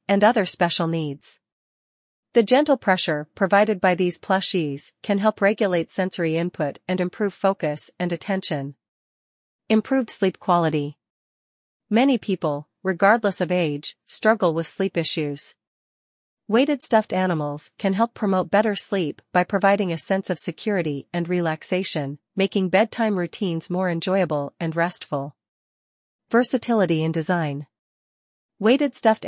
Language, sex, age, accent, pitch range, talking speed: English, female, 40-59, American, 155-200 Hz, 125 wpm